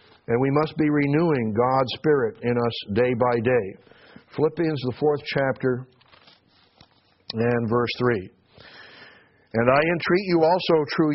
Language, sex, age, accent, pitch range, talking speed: English, male, 60-79, American, 130-155 Hz, 135 wpm